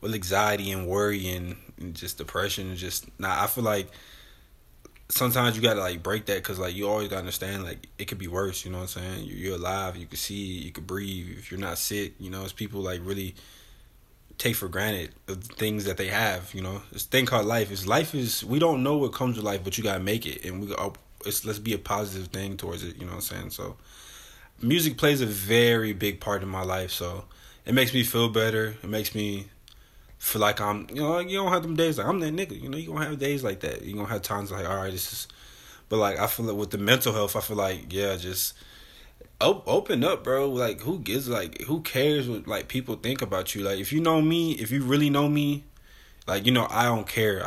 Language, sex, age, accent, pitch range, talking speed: English, male, 20-39, American, 95-115 Hz, 245 wpm